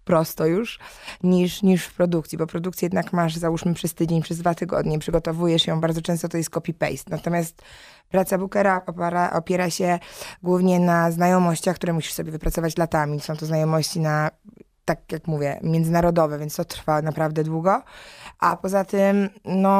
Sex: female